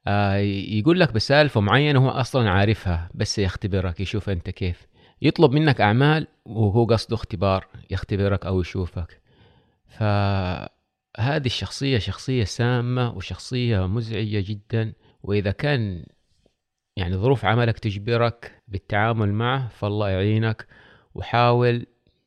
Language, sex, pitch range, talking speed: Arabic, male, 95-120 Hz, 105 wpm